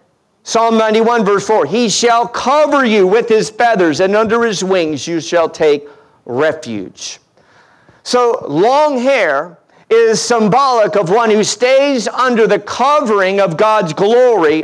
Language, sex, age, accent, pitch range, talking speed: English, male, 50-69, American, 175-235 Hz, 140 wpm